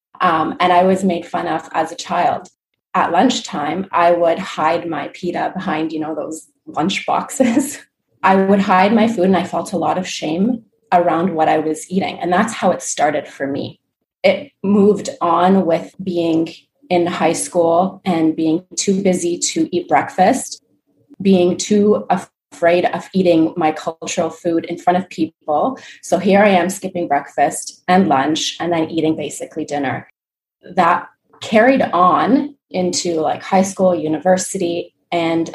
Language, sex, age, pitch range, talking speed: English, female, 30-49, 165-190 Hz, 165 wpm